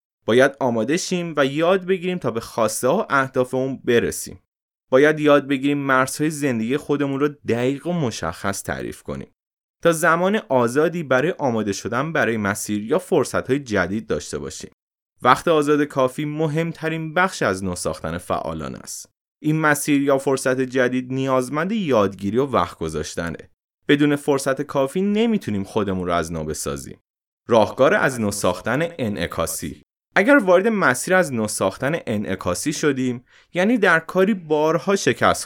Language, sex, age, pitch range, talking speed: Persian, male, 20-39, 115-170 Hz, 135 wpm